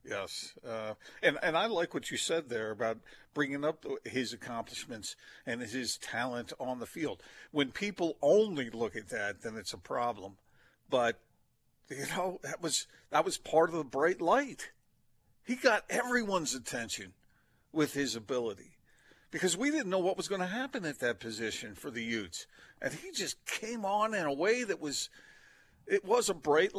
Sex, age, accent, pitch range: male, 50-69, American, 115-185 Hz